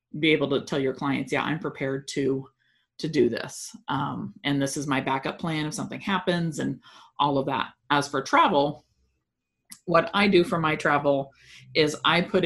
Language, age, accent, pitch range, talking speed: English, 40-59, American, 140-175 Hz, 190 wpm